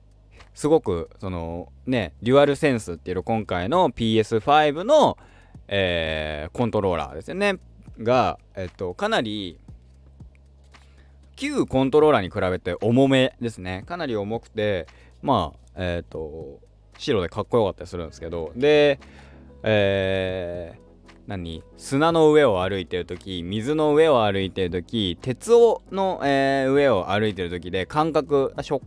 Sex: male